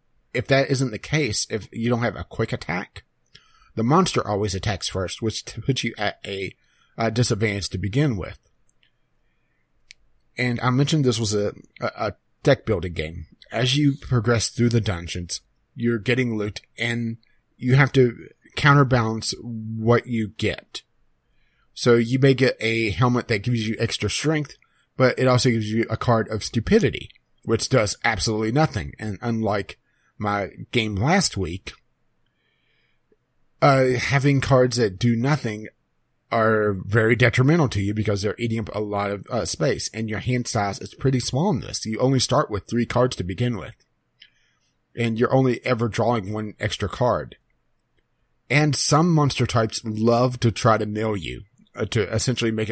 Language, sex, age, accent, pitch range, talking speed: English, male, 30-49, American, 105-125 Hz, 165 wpm